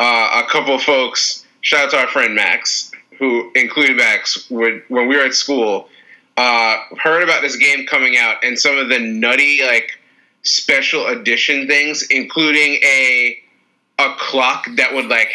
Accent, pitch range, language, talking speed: American, 130-185 Hz, English, 170 wpm